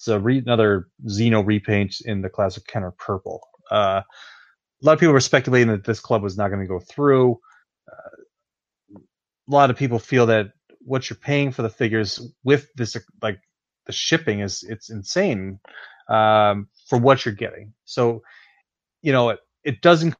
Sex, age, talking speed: male, 30-49, 170 wpm